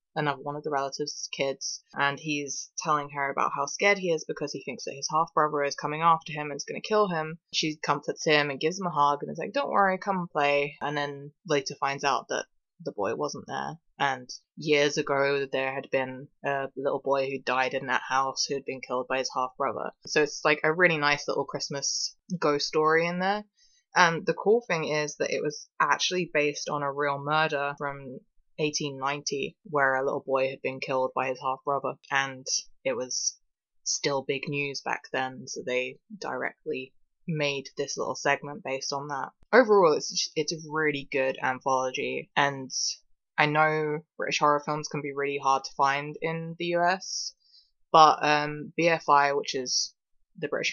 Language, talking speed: English, 195 wpm